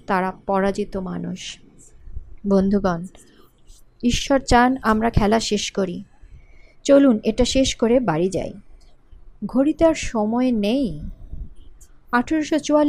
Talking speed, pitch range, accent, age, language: 100 wpm, 210-275 Hz, native, 30-49, Bengali